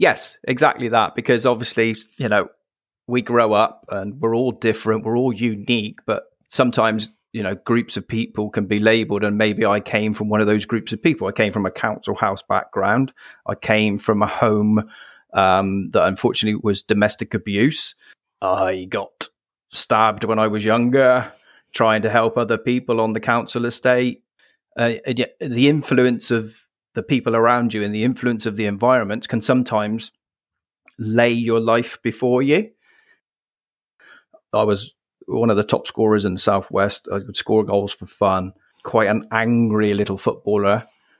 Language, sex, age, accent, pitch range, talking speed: English, male, 30-49, British, 105-120 Hz, 165 wpm